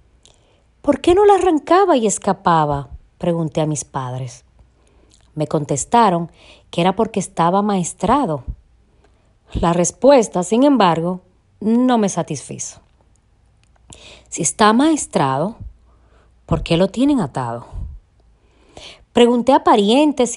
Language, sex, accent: Spanish, female, American